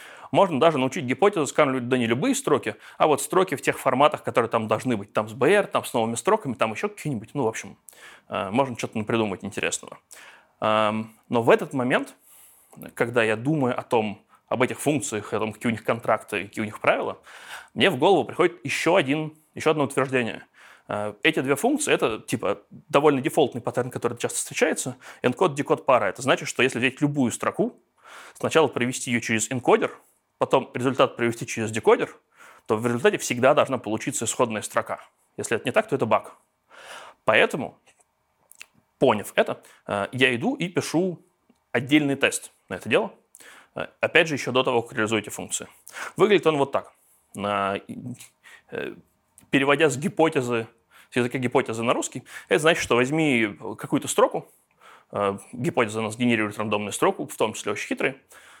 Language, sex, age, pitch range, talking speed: English, male, 20-39, 110-145 Hz, 165 wpm